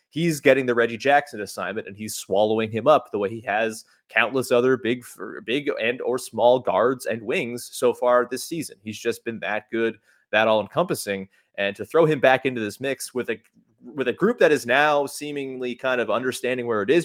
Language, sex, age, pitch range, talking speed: English, male, 20-39, 110-130 Hz, 210 wpm